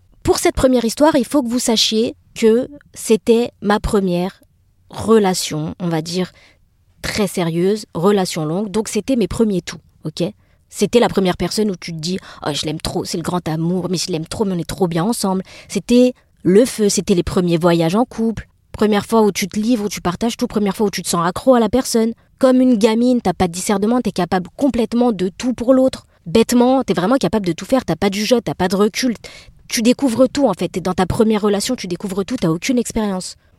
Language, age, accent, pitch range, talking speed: French, 20-39, French, 185-245 Hz, 235 wpm